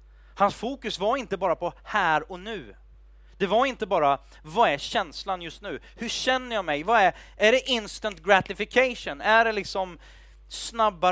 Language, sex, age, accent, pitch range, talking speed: Swedish, male, 30-49, native, 120-195 Hz, 175 wpm